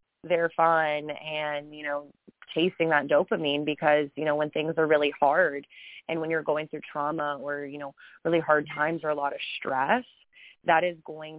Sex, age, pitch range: female, 20-39, 155-185 Hz